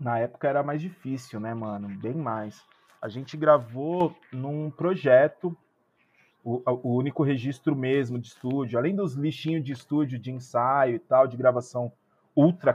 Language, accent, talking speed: Portuguese, Brazilian, 155 wpm